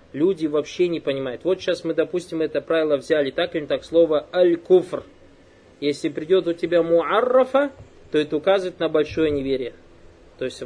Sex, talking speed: male, 165 wpm